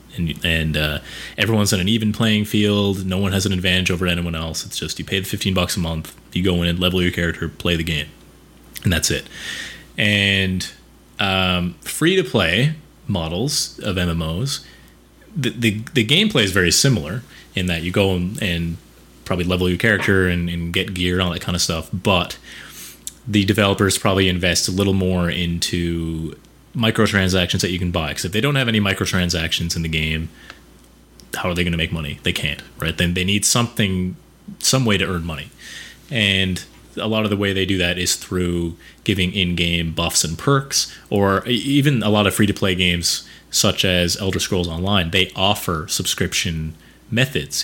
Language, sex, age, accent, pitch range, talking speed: English, male, 30-49, American, 85-100 Hz, 185 wpm